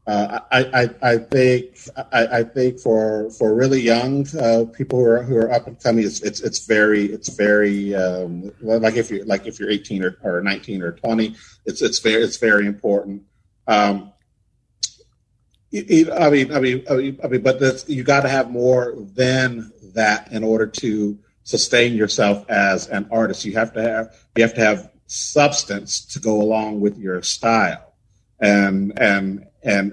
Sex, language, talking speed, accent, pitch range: male, English, 180 wpm, American, 105-120 Hz